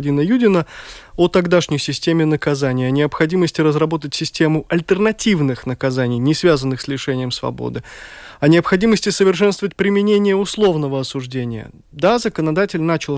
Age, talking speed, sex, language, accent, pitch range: 20-39, 115 wpm, male, Russian, native, 145-195 Hz